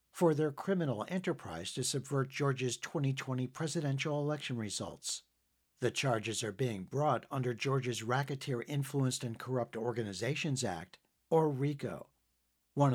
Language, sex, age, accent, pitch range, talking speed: English, male, 60-79, American, 115-150 Hz, 125 wpm